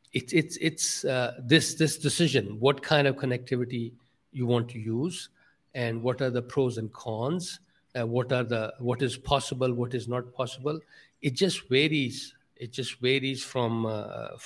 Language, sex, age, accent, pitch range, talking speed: English, male, 60-79, Indian, 120-145 Hz, 180 wpm